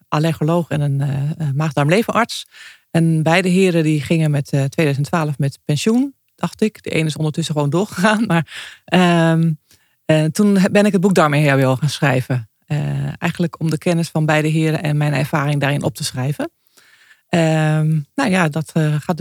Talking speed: 175 wpm